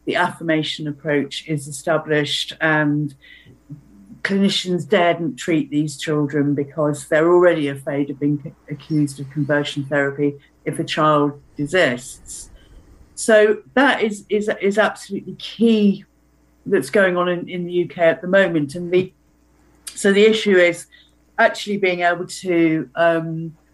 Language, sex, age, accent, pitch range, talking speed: English, female, 50-69, British, 160-200 Hz, 135 wpm